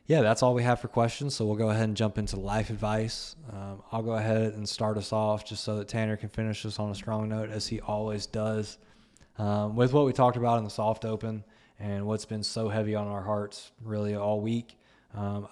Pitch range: 105-115 Hz